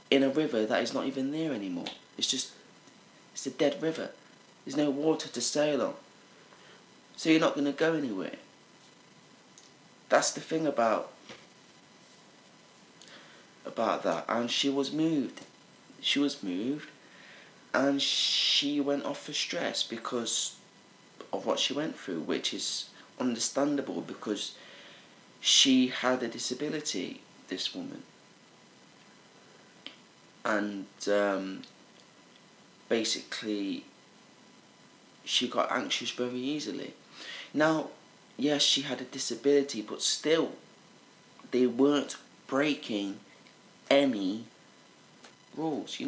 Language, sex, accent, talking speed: English, male, British, 110 wpm